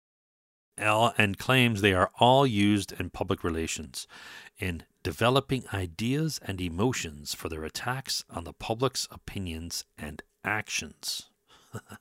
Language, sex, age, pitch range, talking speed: English, male, 40-59, 85-110 Hz, 120 wpm